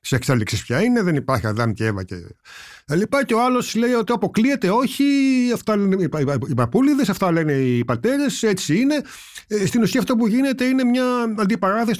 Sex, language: male, Greek